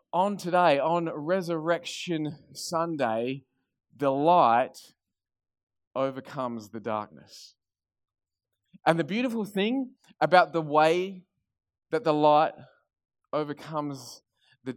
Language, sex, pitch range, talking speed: English, male, 100-155 Hz, 90 wpm